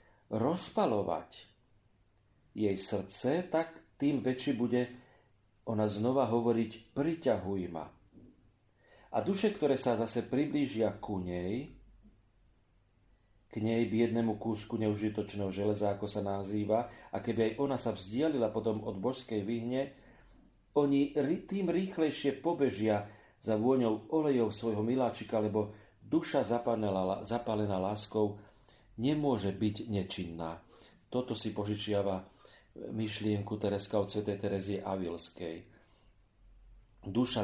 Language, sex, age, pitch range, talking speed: Slovak, male, 40-59, 105-125 Hz, 105 wpm